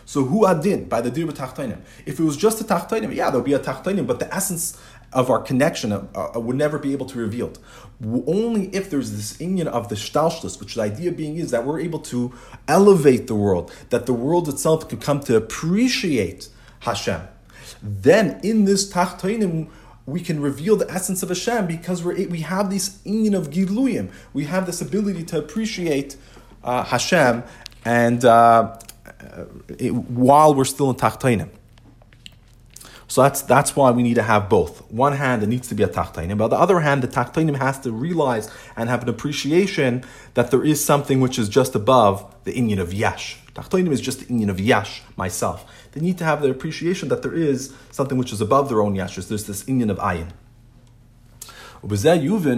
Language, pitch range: English, 115-165 Hz